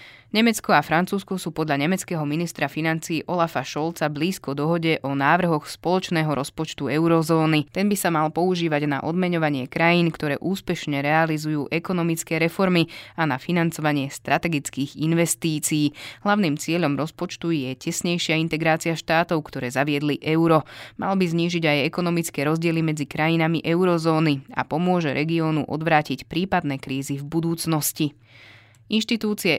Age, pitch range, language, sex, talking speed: 20-39, 145-175 Hz, Slovak, female, 130 wpm